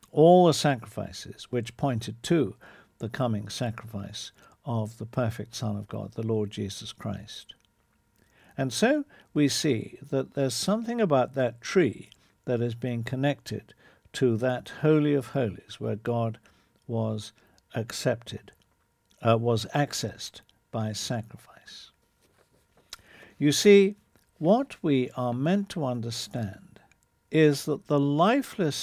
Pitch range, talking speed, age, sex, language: 115-155 Hz, 125 wpm, 60-79, male, English